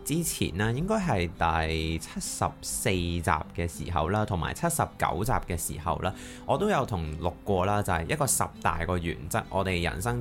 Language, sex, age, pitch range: Chinese, male, 20-39, 85-105 Hz